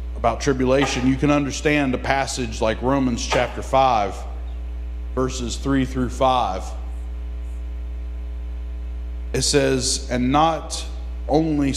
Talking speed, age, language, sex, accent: 100 wpm, 40-59, English, male, American